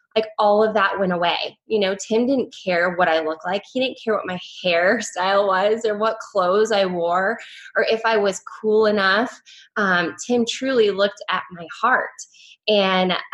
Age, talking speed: 10-29, 185 wpm